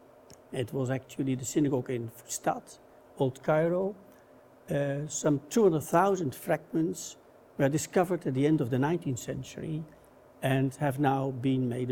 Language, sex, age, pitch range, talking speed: English, male, 60-79, 125-155 Hz, 135 wpm